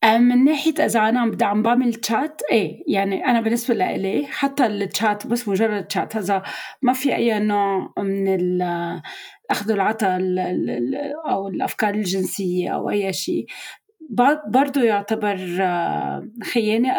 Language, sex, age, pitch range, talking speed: Arabic, female, 30-49, 190-250 Hz, 125 wpm